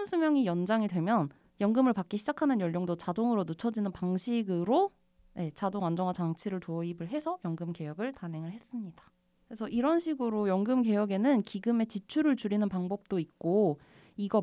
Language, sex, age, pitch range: Korean, female, 20-39, 180-260 Hz